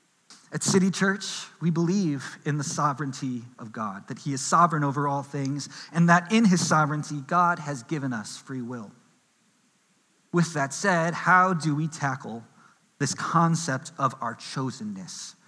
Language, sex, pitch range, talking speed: English, male, 140-185 Hz, 155 wpm